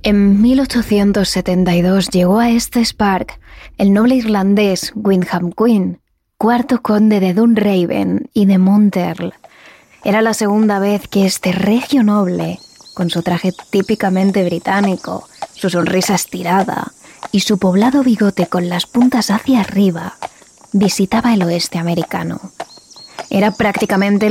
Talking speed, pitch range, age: 120 wpm, 185-225 Hz, 20-39